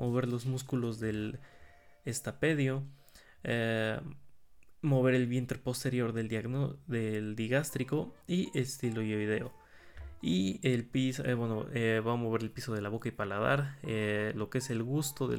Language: Spanish